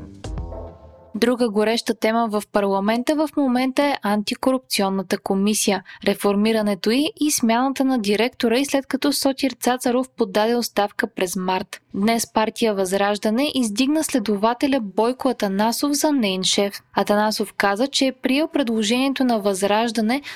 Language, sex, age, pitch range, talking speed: Bulgarian, female, 20-39, 205-265 Hz, 120 wpm